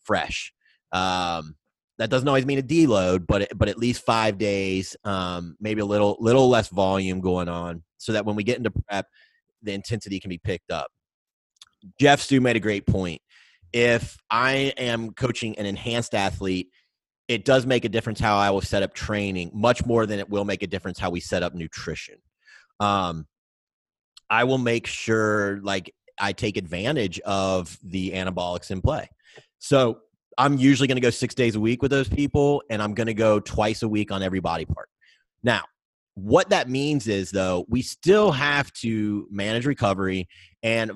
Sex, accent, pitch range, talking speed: male, American, 95-120 Hz, 185 wpm